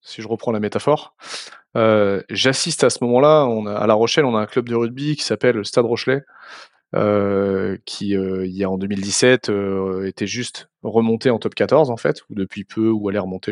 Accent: French